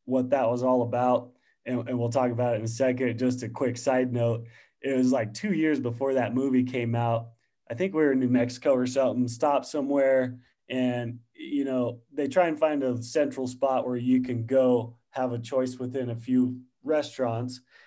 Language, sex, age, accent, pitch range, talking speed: English, male, 30-49, American, 125-160 Hz, 205 wpm